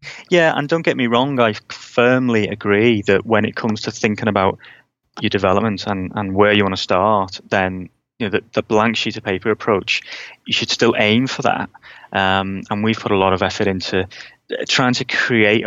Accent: British